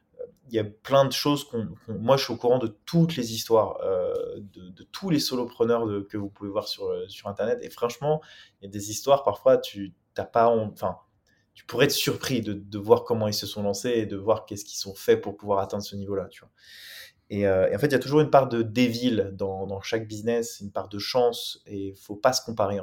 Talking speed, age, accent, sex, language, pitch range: 260 wpm, 20-39, French, male, French, 100-125 Hz